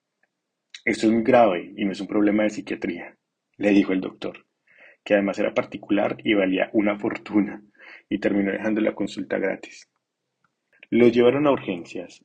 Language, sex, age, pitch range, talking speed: Spanish, male, 20-39, 100-115 Hz, 160 wpm